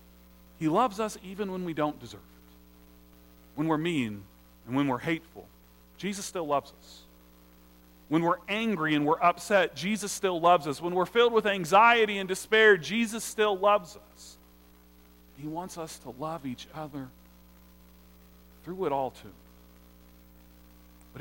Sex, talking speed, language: male, 150 wpm, English